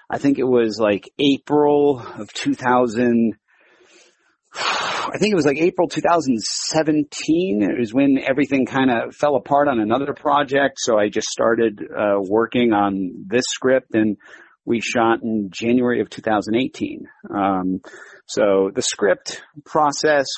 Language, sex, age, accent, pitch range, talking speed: English, male, 40-59, American, 100-130 Hz, 135 wpm